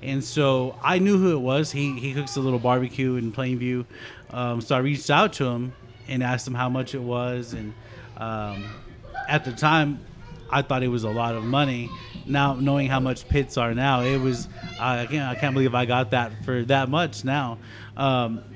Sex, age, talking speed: male, 30-49, 210 wpm